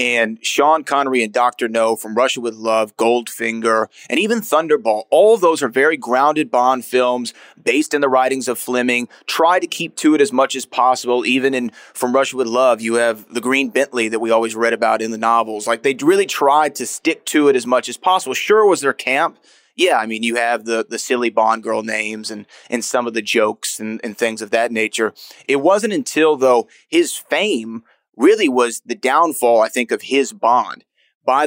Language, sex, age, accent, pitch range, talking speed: English, male, 30-49, American, 115-155 Hz, 210 wpm